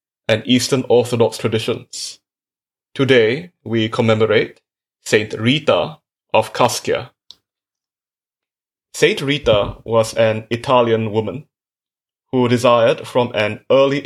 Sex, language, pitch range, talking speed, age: male, English, 110-135 Hz, 95 wpm, 20-39